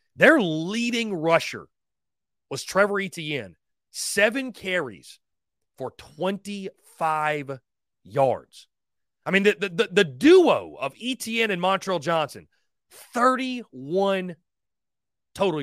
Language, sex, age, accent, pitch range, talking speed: English, male, 30-49, American, 140-195 Hz, 95 wpm